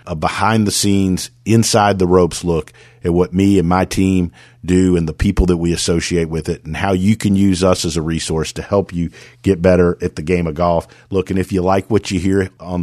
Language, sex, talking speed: English, male, 220 wpm